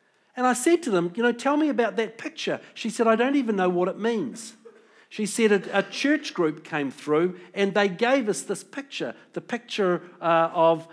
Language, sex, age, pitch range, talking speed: English, male, 50-69, 165-235 Hz, 215 wpm